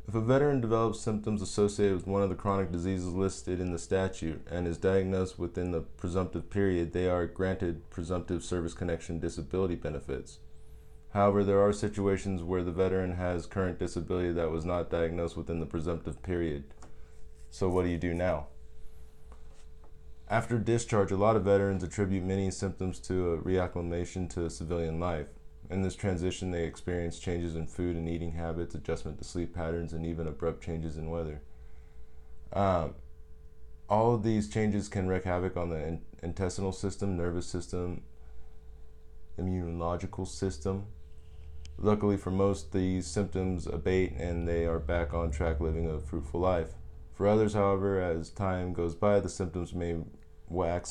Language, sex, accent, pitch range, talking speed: English, male, American, 80-95 Hz, 160 wpm